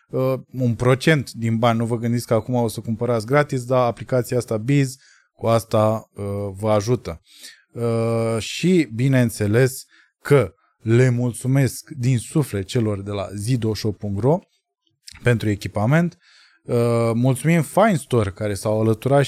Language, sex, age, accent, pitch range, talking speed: Romanian, male, 20-39, native, 115-150 Hz, 135 wpm